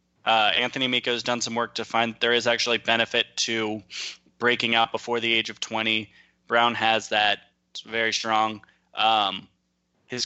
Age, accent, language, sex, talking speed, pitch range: 20-39, American, English, male, 170 wpm, 110-125 Hz